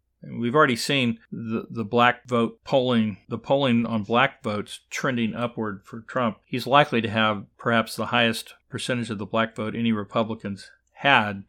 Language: English